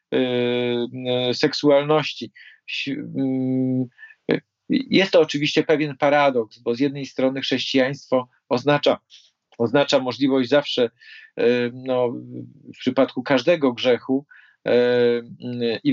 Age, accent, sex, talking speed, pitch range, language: 40-59, native, male, 80 wpm, 130-150 Hz, Polish